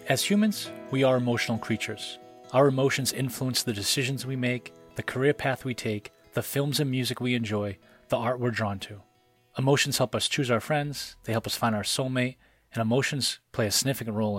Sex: male